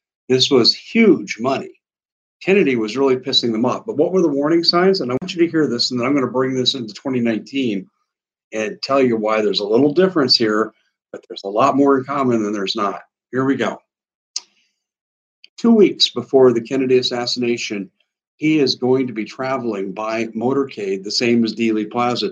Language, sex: English, male